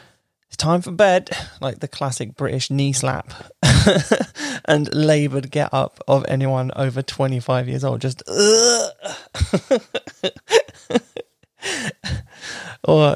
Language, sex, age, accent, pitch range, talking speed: English, male, 20-39, British, 135-215 Hz, 95 wpm